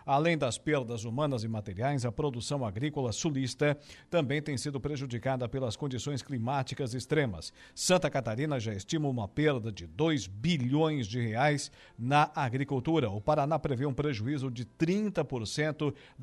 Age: 50-69